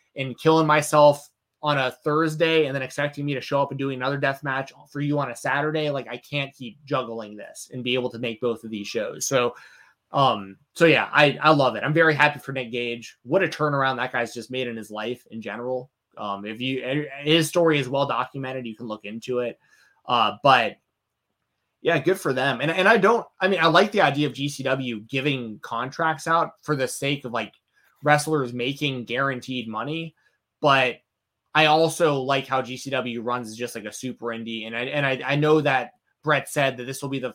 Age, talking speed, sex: 20-39, 215 wpm, male